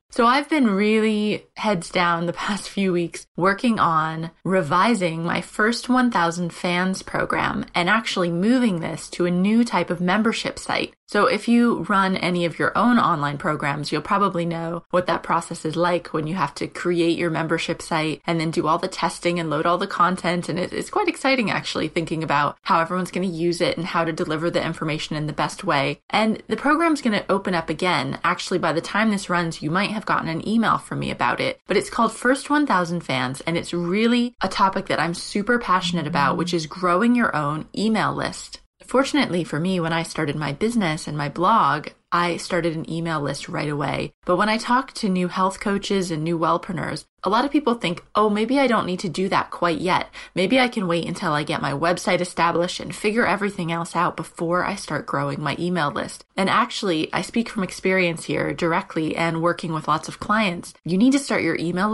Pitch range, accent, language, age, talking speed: 165-205 Hz, American, English, 20-39, 215 wpm